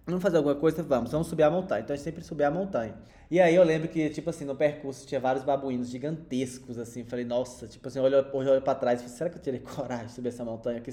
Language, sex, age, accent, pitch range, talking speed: Portuguese, male, 20-39, Brazilian, 135-190 Hz, 275 wpm